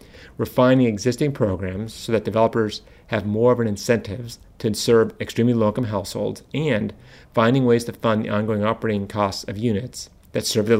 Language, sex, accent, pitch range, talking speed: English, male, American, 100-120 Hz, 165 wpm